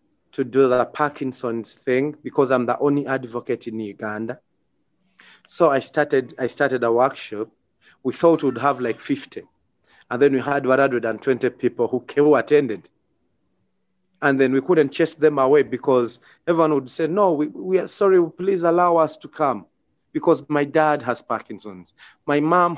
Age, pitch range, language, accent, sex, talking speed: 30-49, 125-150 Hz, English, South African, male, 165 wpm